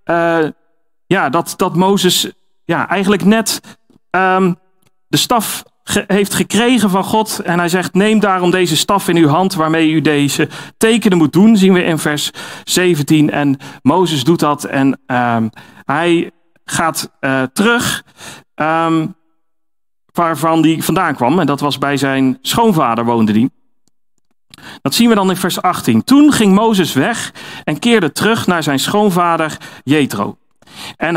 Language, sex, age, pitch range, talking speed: Dutch, male, 40-59, 155-205 Hz, 150 wpm